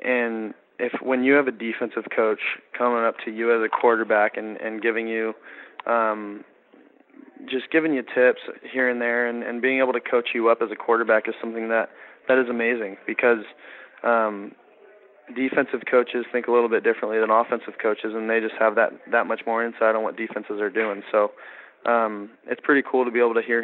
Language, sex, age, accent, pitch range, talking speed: English, male, 20-39, American, 110-120 Hz, 205 wpm